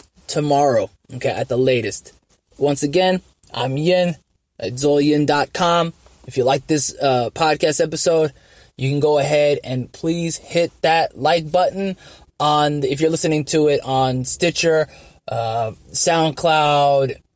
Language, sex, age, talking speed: English, male, 20-39, 135 wpm